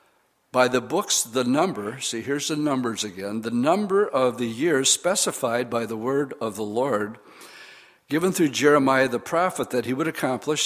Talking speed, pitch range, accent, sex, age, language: 175 wpm, 115-140 Hz, American, male, 60-79, English